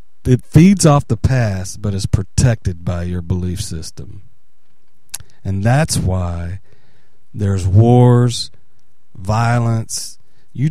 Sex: male